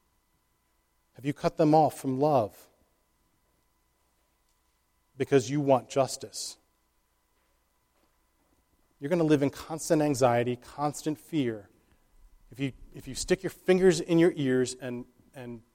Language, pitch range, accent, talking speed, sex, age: English, 120-165 Hz, American, 120 wpm, male, 40-59